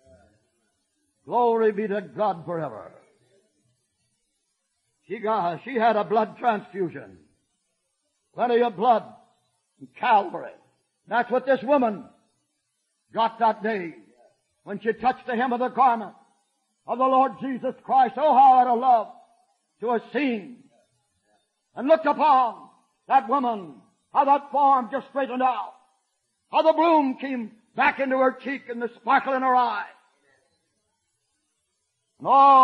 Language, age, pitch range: English, 60-79, 225-275 Hz